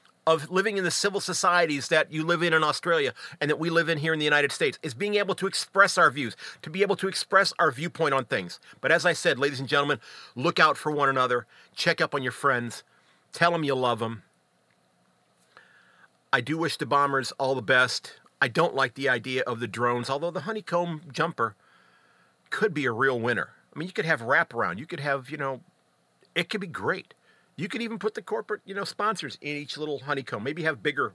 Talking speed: 225 wpm